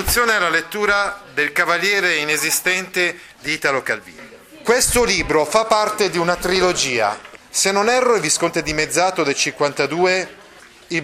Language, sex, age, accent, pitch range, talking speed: Italian, male, 40-59, native, 150-190 Hz, 145 wpm